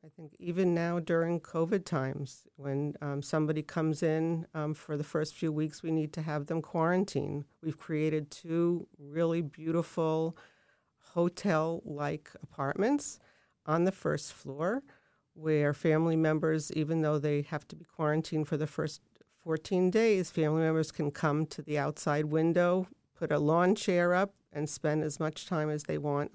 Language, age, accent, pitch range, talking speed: English, 50-69, American, 145-165 Hz, 160 wpm